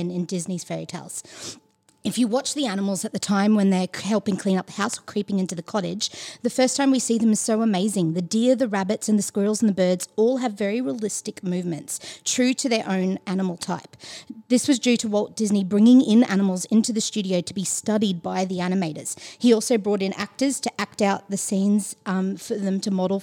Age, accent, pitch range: 30-49, Australian, 195-235 Hz